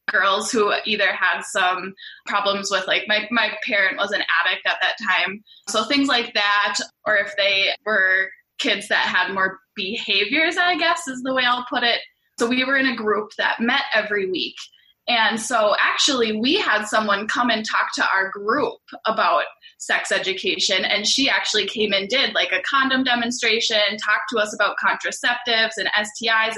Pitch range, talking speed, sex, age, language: 205-260 Hz, 180 wpm, female, 10-29, English